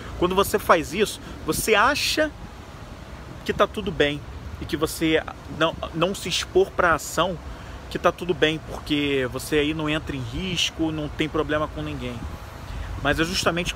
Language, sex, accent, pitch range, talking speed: Portuguese, male, Brazilian, 145-190 Hz, 165 wpm